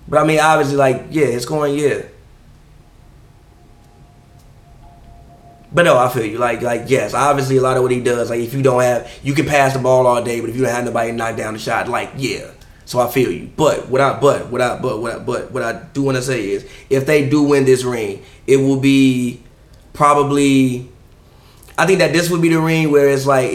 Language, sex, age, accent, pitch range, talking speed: English, male, 20-39, American, 125-145 Hz, 230 wpm